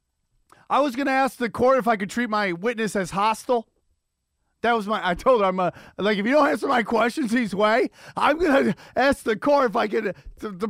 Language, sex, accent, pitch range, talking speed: English, male, American, 165-235 Hz, 235 wpm